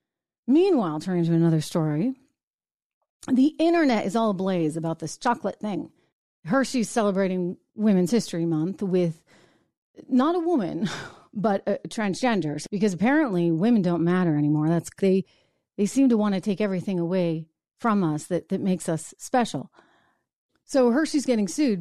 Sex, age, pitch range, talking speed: female, 40-59, 175-245 Hz, 145 wpm